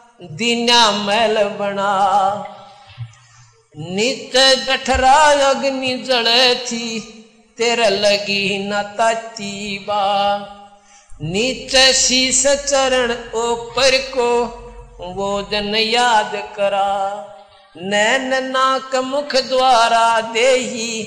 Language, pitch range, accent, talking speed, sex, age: Hindi, 195-235 Hz, native, 70 wpm, male, 50-69